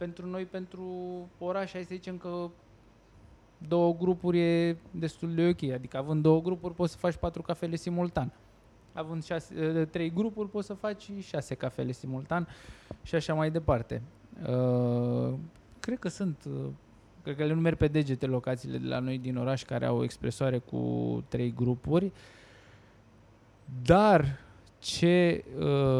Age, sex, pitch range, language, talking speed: 20-39, male, 125-165 Hz, Romanian, 150 wpm